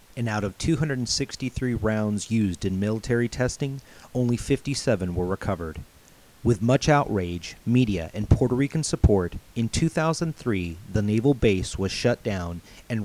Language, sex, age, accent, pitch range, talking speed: English, male, 40-59, American, 95-125 Hz, 140 wpm